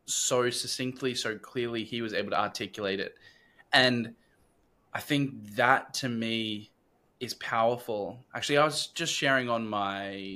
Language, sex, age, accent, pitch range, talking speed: English, male, 10-29, Australian, 105-130 Hz, 145 wpm